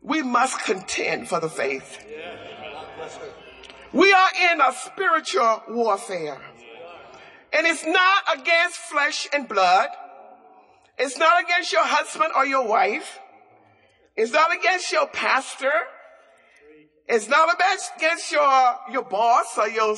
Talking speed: 120 wpm